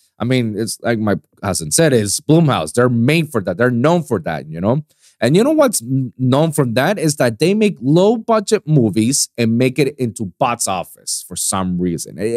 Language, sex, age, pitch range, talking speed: English, male, 30-49, 130-185 Hz, 205 wpm